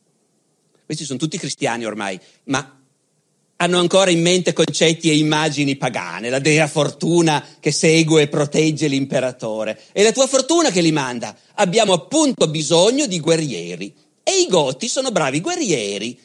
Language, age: Italian, 40-59